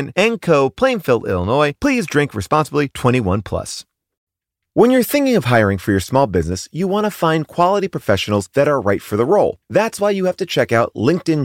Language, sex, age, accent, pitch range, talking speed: English, male, 30-49, American, 110-180 Hz, 195 wpm